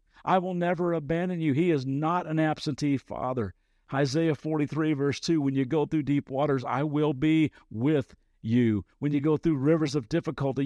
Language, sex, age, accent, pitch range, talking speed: English, male, 50-69, American, 105-145 Hz, 185 wpm